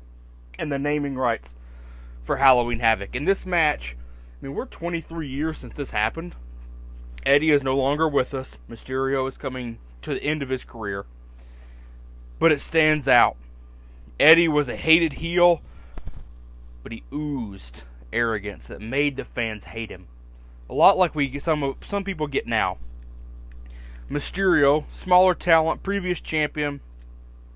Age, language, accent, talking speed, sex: 20-39, English, American, 145 wpm, male